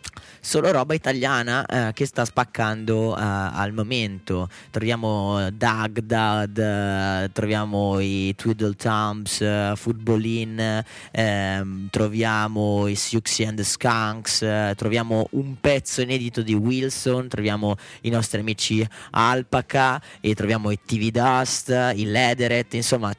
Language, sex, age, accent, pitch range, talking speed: Italian, male, 20-39, native, 105-135 Hz, 115 wpm